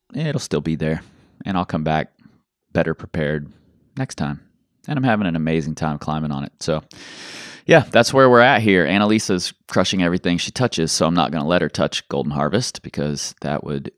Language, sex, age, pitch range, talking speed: English, male, 30-49, 75-100 Hz, 200 wpm